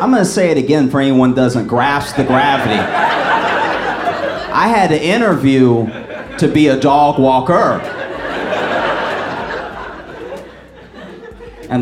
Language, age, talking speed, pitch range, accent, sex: English, 30-49, 110 wpm, 120-150 Hz, American, male